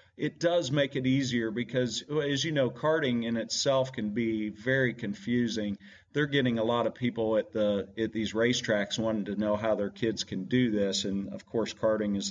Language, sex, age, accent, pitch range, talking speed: English, male, 40-59, American, 100-115 Hz, 200 wpm